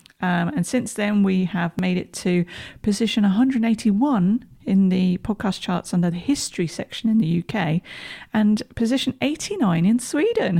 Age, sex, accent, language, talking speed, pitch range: 40-59, female, British, English, 155 wpm, 170-230 Hz